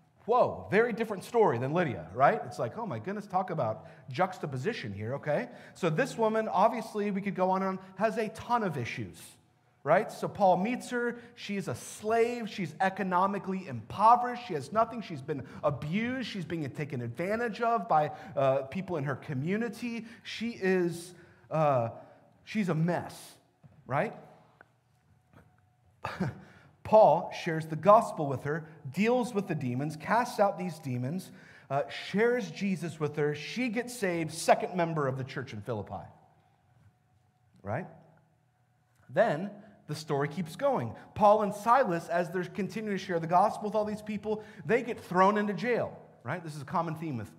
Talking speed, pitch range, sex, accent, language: 160 wpm, 145-215 Hz, male, American, English